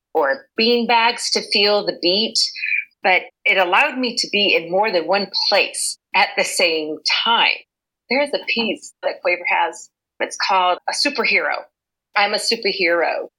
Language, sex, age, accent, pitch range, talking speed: English, female, 40-59, American, 175-230 Hz, 150 wpm